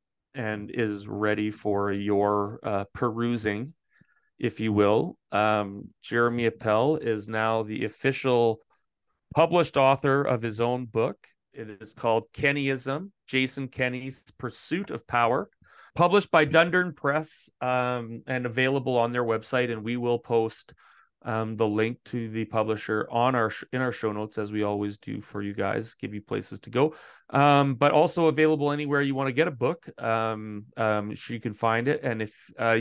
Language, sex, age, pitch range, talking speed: English, male, 30-49, 110-140 Hz, 170 wpm